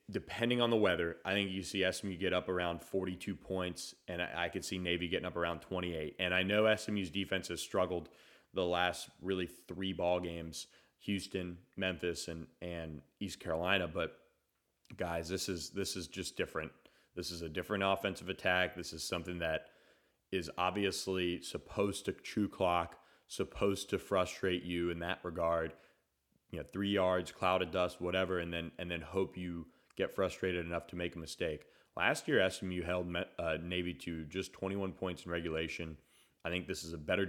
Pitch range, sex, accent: 85-95 Hz, male, American